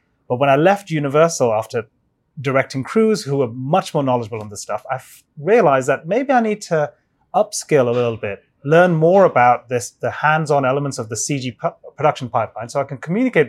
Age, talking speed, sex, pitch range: 30-49, 190 wpm, male, 125-160 Hz